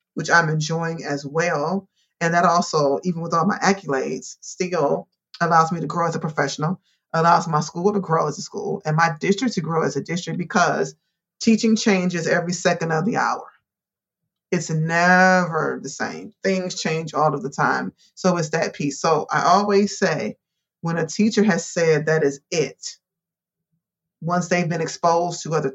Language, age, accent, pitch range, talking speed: English, 30-49, American, 155-185 Hz, 180 wpm